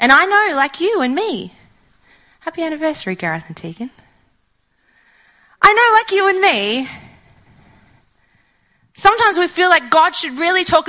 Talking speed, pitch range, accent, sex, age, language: 145 wpm, 240-350 Hz, Australian, female, 30-49, English